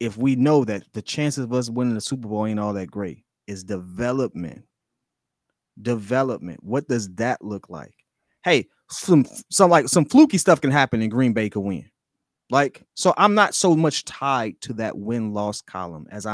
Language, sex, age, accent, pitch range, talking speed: English, male, 30-49, American, 105-145 Hz, 185 wpm